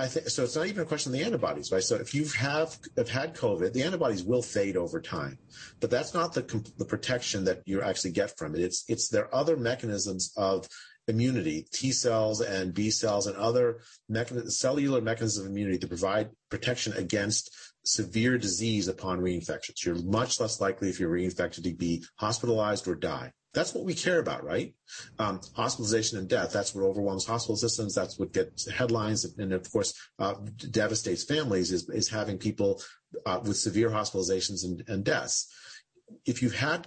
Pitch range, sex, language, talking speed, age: 100-130 Hz, male, English, 190 wpm, 40-59